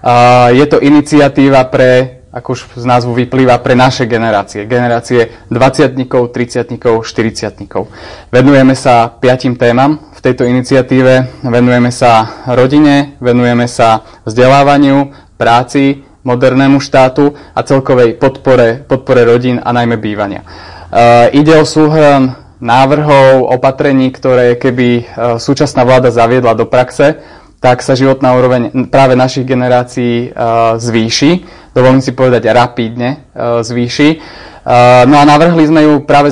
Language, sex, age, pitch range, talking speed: Slovak, male, 20-39, 120-135 Hz, 120 wpm